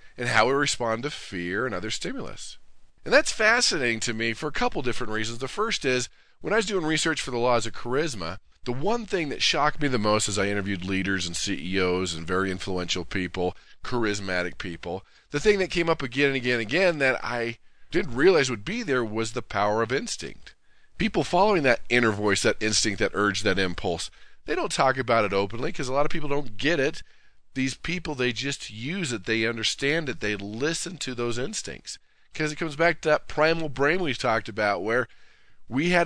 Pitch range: 110-145 Hz